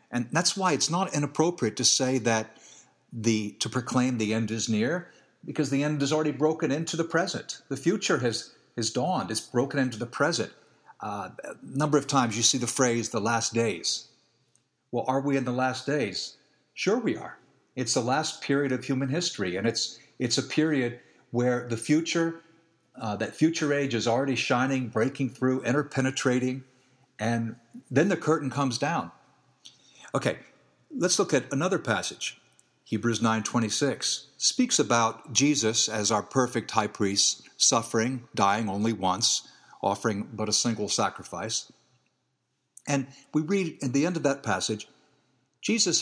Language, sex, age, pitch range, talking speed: English, male, 50-69, 115-150 Hz, 160 wpm